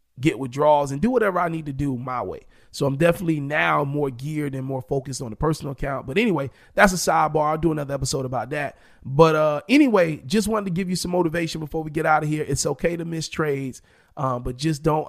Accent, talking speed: American, 240 wpm